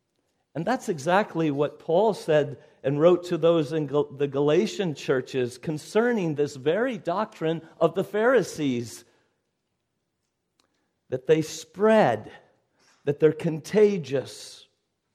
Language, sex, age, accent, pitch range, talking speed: English, male, 50-69, American, 125-170 Hz, 105 wpm